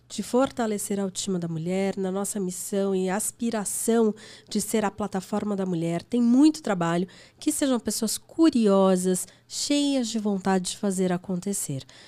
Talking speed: 150 wpm